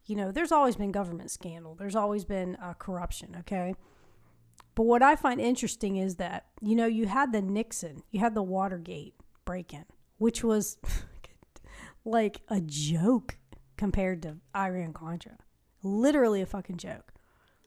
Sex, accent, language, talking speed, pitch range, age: female, American, English, 145 wpm, 185-235 Hz, 30-49